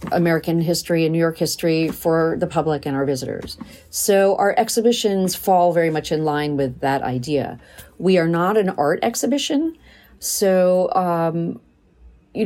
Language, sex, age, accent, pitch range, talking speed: English, female, 40-59, American, 155-195 Hz, 155 wpm